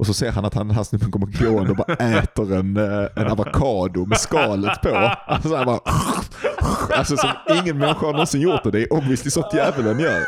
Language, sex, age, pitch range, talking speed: Swedish, male, 30-49, 95-125 Hz, 215 wpm